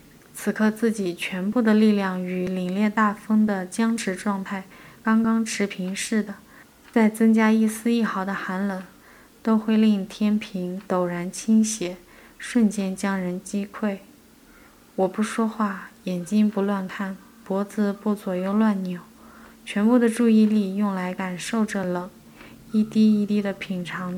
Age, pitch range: 20-39, 195-220 Hz